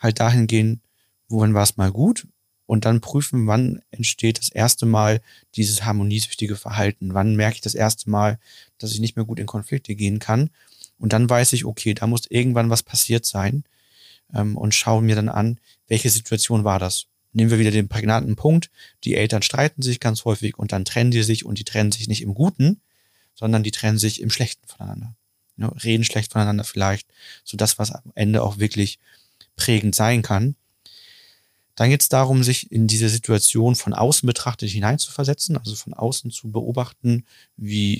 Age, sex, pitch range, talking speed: 30-49, male, 105-120 Hz, 185 wpm